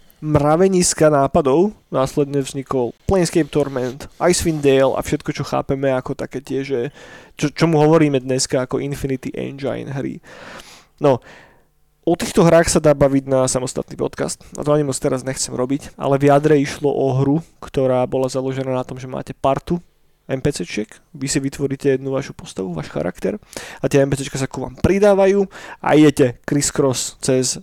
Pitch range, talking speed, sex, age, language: 135-150 Hz, 160 wpm, male, 20-39, Slovak